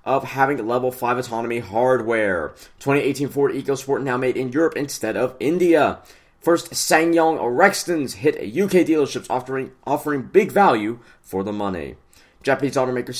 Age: 20-39